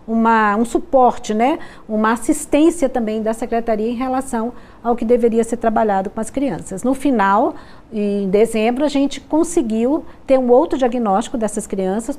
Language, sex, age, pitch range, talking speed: Portuguese, female, 50-69, 200-260 Hz, 160 wpm